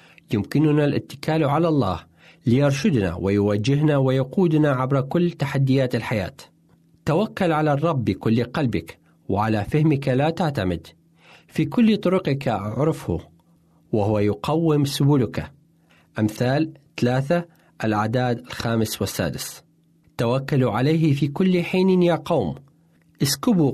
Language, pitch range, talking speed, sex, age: Arabic, 110-155 Hz, 100 wpm, male, 40-59